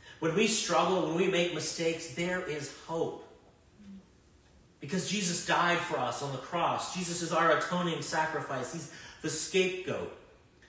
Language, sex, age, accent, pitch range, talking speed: English, male, 40-59, American, 110-155 Hz, 145 wpm